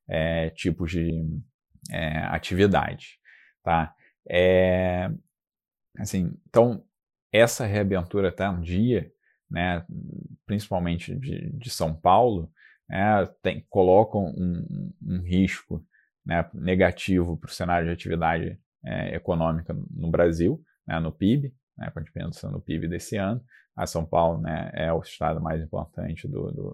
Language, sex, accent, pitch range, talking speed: Portuguese, male, Brazilian, 85-105 Hz, 135 wpm